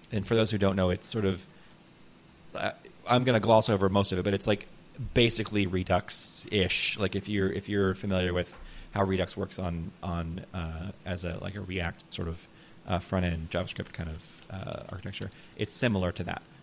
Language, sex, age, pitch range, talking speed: English, male, 30-49, 95-130 Hz, 200 wpm